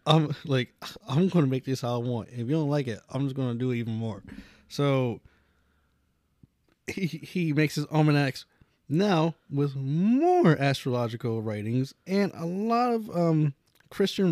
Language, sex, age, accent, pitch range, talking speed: English, male, 20-39, American, 105-145 Hz, 165 wpm